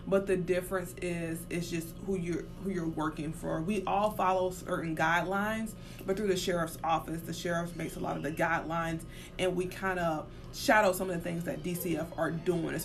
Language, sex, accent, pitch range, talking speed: English, female, American, 160-185 Hz, 200 wpm